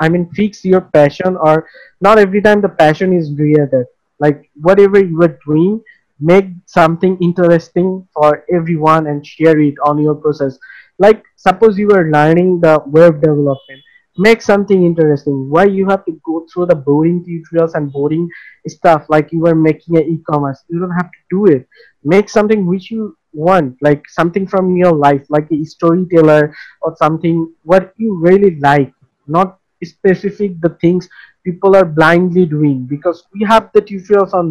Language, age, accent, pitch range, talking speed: English, 20-39, Indian, 155-185 Hz, 170 wpm